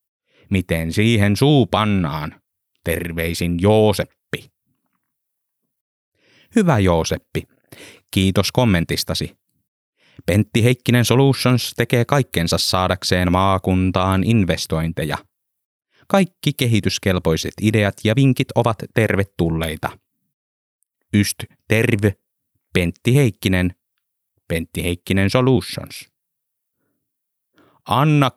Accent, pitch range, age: native, 90-120 Hz, 30-49